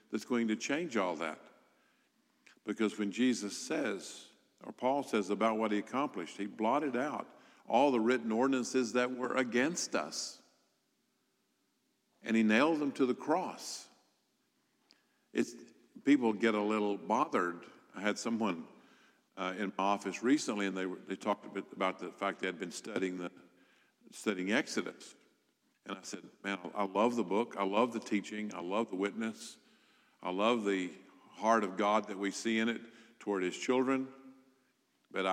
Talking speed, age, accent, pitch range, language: 165 wpm, 50-69, American, 100-120 Hz, English